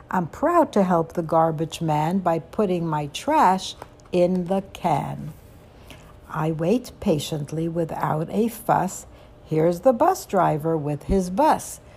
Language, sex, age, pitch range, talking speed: English, female, 60-79, 155-215 Hz, 135 wpm